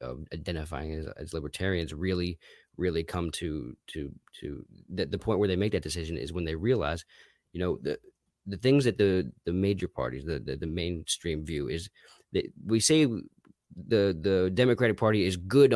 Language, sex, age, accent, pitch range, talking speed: English, male, 20-39, American, 85-120 Hz, 185 wpm